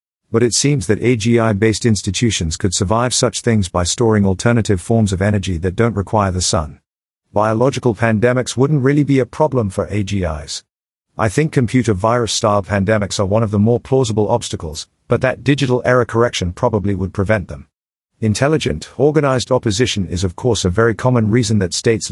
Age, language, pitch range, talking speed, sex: 50-69, English, 95-120 Hz, 170 wpm, male